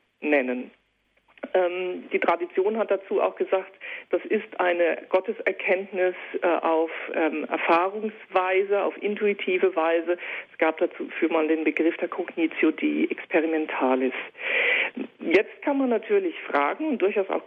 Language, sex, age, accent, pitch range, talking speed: German, female, 50-69, German, 175-245 Hz, 120 wpm